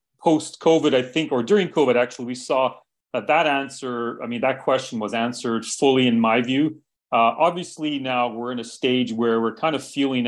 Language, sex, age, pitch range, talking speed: English, male, 30-49, 115-145 Hz, 200 wpm